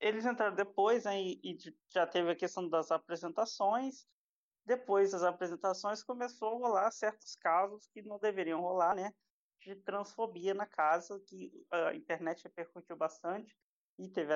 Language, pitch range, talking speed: Portuguese, 170-205 Hz, 150 wpm